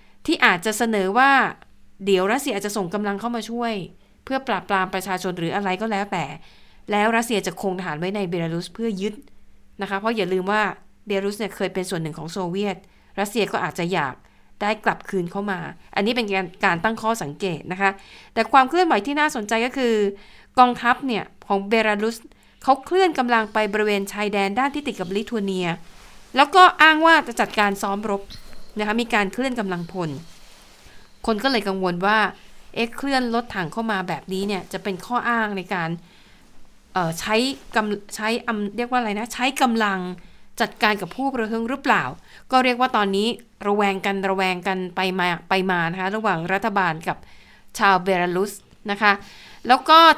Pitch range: 190-235 Hz